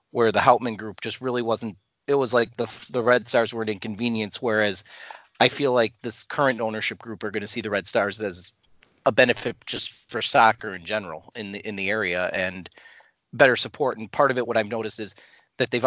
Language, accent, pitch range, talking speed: English, American, 105-130 Hz, 220 wpm